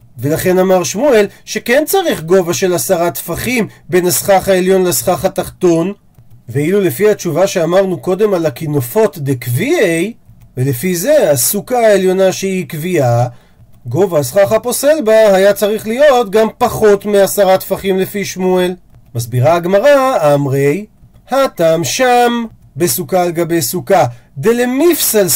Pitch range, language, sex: 150-230 Hz, Hebrew, male